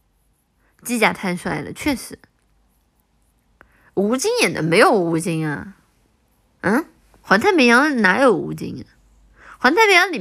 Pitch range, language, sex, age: 180-265 Hz, Chinese, female, 20-39